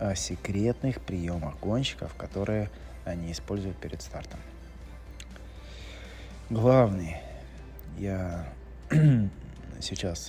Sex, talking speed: male, 70 wpm